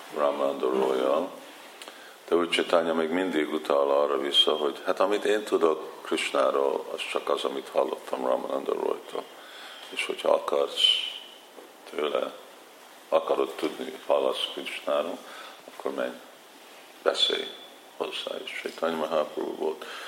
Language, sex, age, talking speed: Hungarian, male, 50-69, 110 wpm